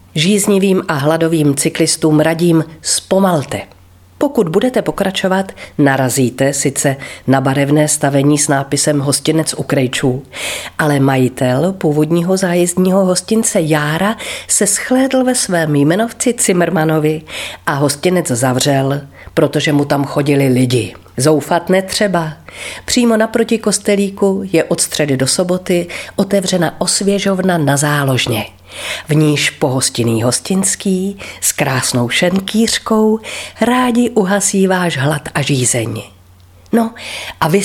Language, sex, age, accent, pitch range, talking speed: Czech, female, 40-59, native, 140-190 Hz, 110 wpm